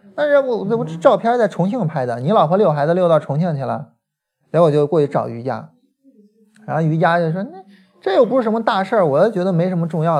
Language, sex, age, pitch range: Chinese, male, 20-39, 165-230 Hz